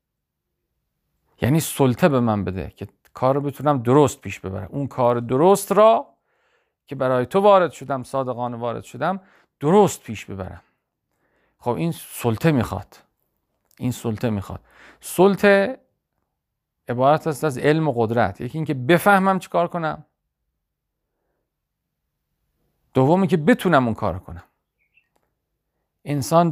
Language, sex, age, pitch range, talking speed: Persian, male, 50-69, 105-165 Hz, 120 wpm